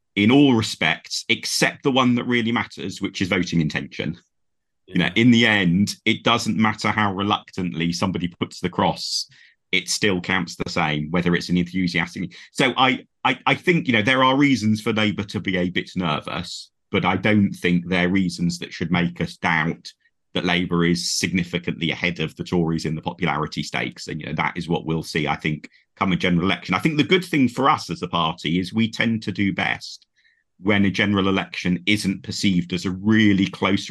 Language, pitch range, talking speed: English, 90-105 Hz, 205 wpm